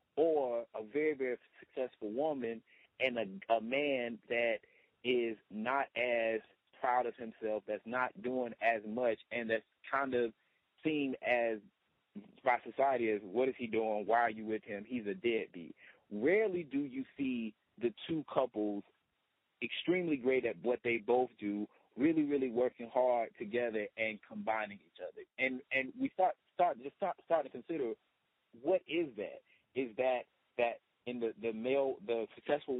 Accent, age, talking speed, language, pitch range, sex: American, 30-49, 160 wpm, English, 120-155 Hz, male